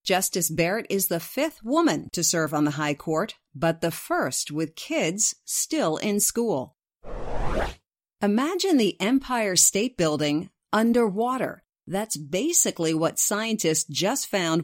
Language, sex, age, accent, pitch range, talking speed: English, female, 50-69, American, 165-230 Hz, 130 wpm